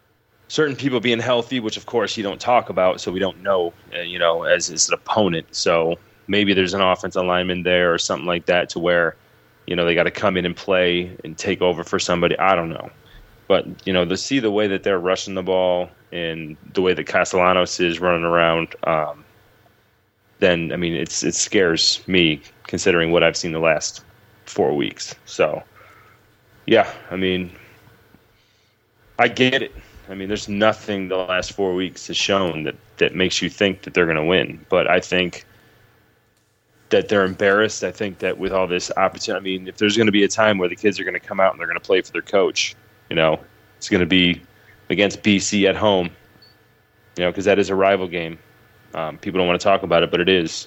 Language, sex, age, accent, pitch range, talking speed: English, male, 30-49, American, 90-110 Hz, 215 wpm